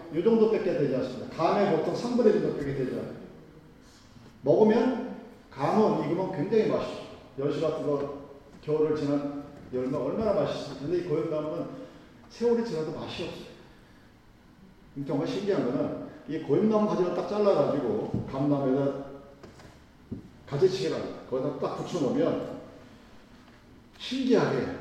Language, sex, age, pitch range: Korean, male, 40-59, 145-205 Hz